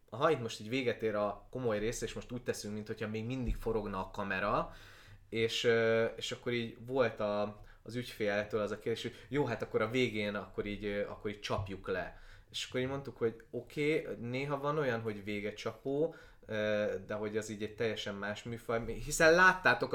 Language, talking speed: Hungarian, 195 wpm